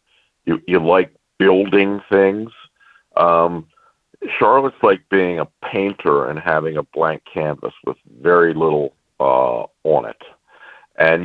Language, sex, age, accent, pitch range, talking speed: English, male, 50-69, American, 80-100 Hz, 125 wpm